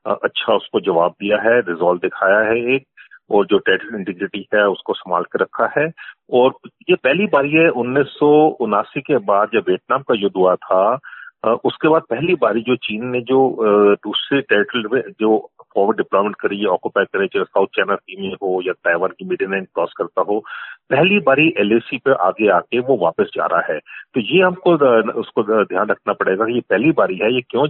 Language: Hindi